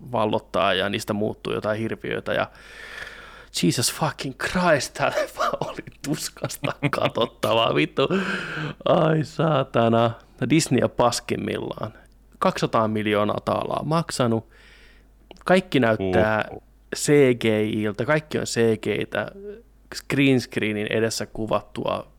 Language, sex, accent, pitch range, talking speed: Finnish, male, native, 110-135 Hz, 90 wpm